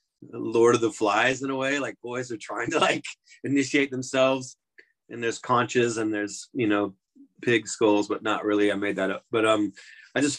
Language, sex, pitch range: English, male, 105-130 Hz